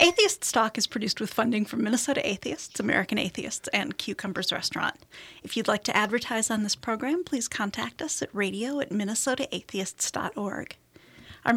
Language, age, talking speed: English, 30-49, 155 wpm